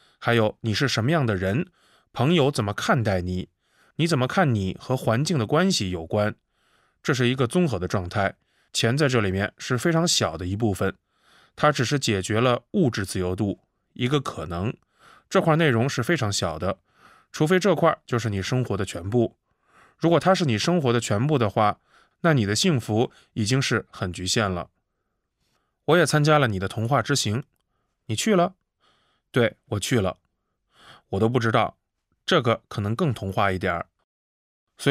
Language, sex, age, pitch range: Chinese, male, 20-39, 100-150 Hz